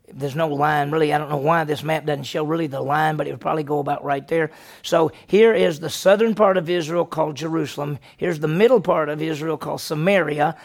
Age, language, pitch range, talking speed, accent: 40-59, English, 155-190 Hz, 230 wpm, American